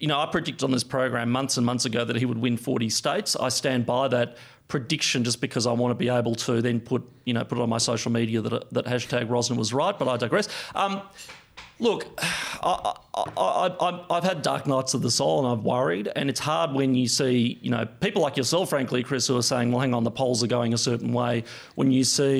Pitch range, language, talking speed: 120-145 Hz, English, 250 wpm